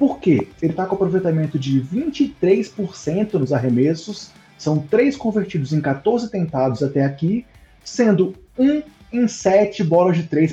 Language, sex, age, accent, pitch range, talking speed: Portuguese, male, 20-39, Brazilian, 145-205 Hz, 140 wpm